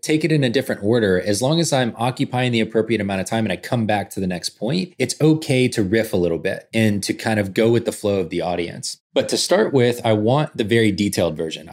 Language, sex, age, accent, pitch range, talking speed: English, male, 20-39, American, 90-115 Hz, 265 wpm